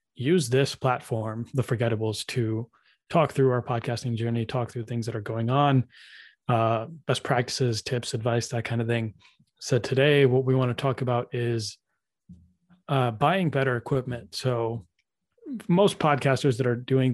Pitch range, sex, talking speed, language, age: 120-135 Hz, male, 160 wpm, English, 20-39